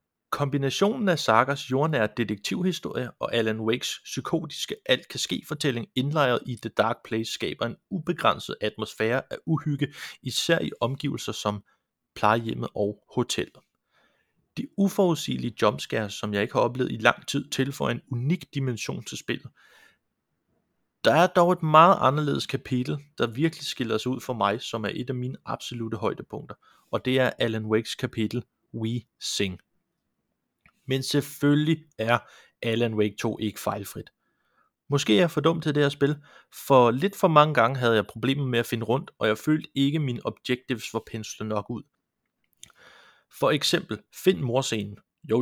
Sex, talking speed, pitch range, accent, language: male, 155 wpm, 115-145 Hz, native, Danish